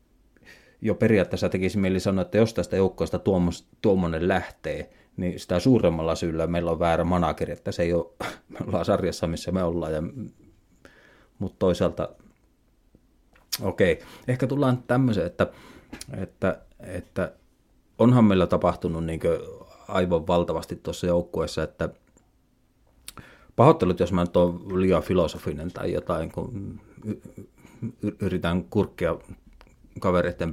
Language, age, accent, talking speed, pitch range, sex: Finnish, 30-49, native, 120 wpm, 85-95 Hz, male